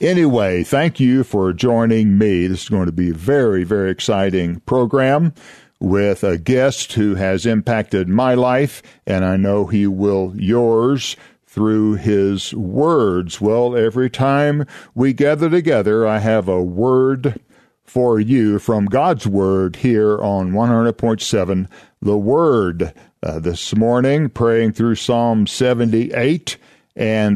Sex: male